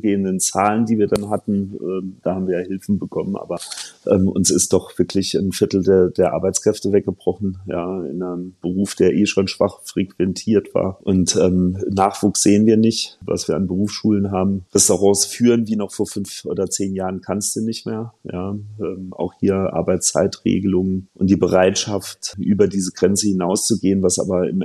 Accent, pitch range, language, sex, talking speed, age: German, 95-105 Hz, German, male, 175 wpm, 40-59